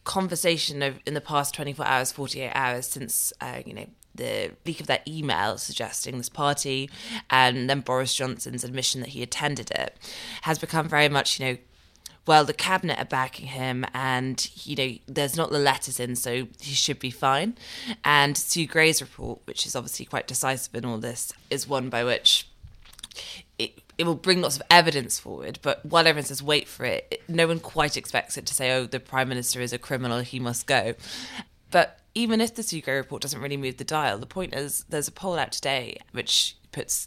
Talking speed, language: 200 wpm, English